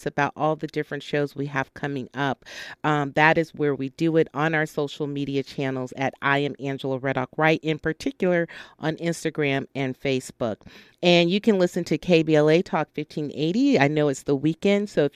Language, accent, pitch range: English, American, 145-175 Hz